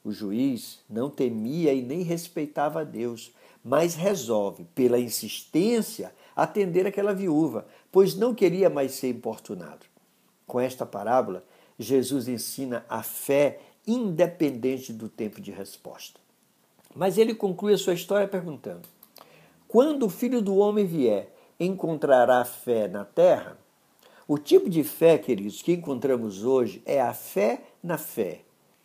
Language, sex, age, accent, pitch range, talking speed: Portuguese, male, 60-79, Brazilian, 125-200 Hz, 135 wpm